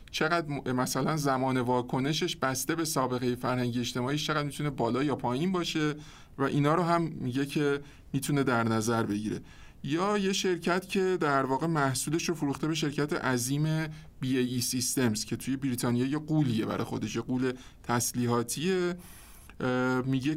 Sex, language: male, Persian